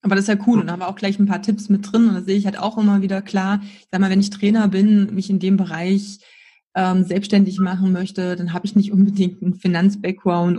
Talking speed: 270 wpm